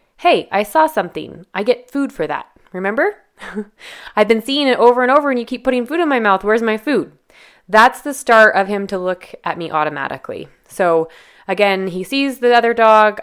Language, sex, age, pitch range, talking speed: English, female, 20-39, 175-225 Hz, 205 wpm